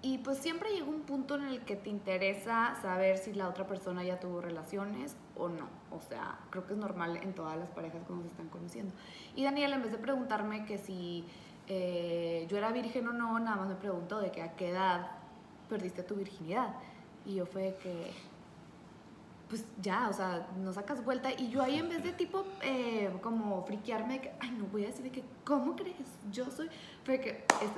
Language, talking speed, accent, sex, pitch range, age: Spanish, 210 wpm, Mexican, female, 190-255 Hz, 20-39